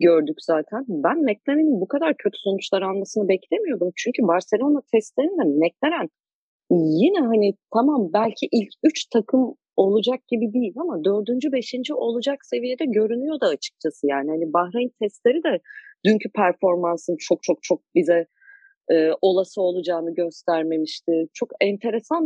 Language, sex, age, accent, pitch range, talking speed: Turkish, female, 40-59, native, 180-265 Hz, 130 wpm